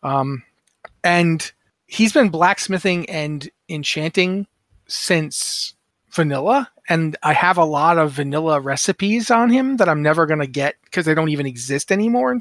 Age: 30-49